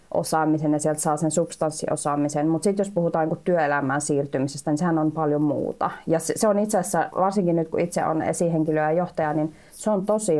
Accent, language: native, Finnish